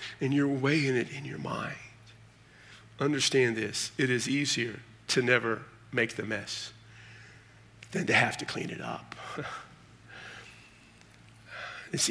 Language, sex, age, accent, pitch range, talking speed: English, male, 50-69, American, 115-135 Hz, 125 wpm